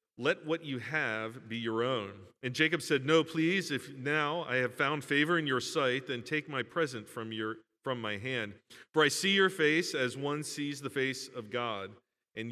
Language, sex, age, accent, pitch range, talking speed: English, male, 40-59, American, 115-150 Hz, 205 wpm